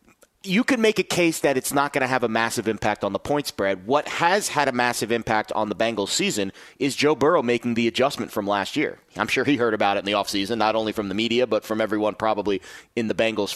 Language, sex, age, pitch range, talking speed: English, male, 30-49, 115-160 Hz, 255 wpm